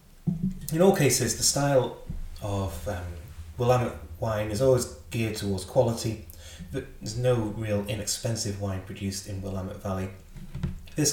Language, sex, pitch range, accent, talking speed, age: English, male, 95-130 Hz, British, 135 wpm, 30-49